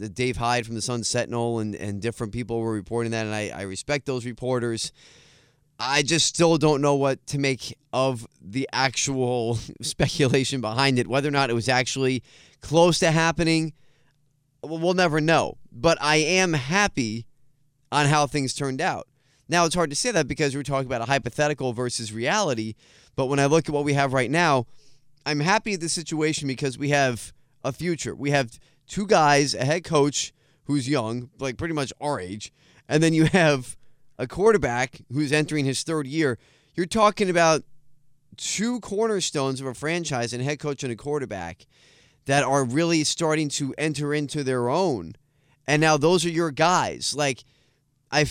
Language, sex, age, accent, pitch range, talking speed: English, male, 20-39, American, 130-155 Hz, 180 wpm